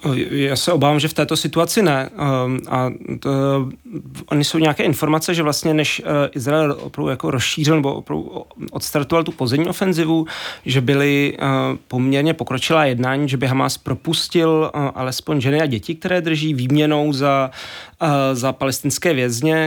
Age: 30-49